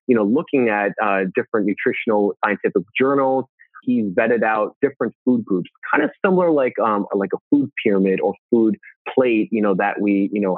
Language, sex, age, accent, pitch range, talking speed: English, male, 30-49, American, 105-135 Hz, 185 wpm